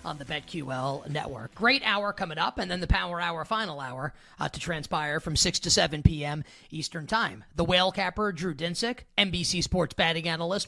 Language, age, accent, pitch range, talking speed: English, 30-49, American, 155-205 Hz, 190 wpm